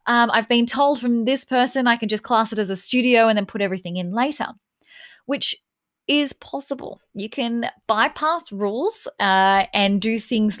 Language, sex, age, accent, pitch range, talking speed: English, female, 20-39, Australian, 195-250 Hz, 180 wpm